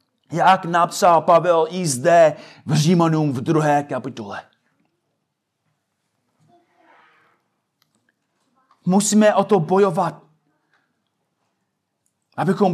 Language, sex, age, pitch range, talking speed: Czech, male, 30-49, 150-190 Hz, 70 wpm